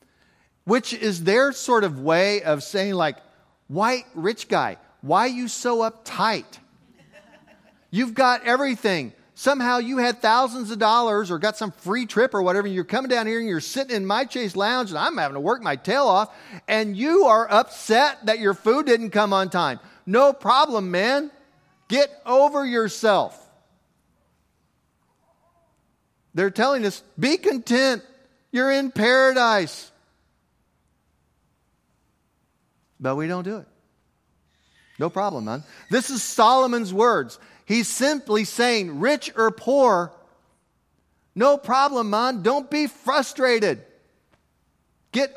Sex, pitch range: male, 180-245 Hz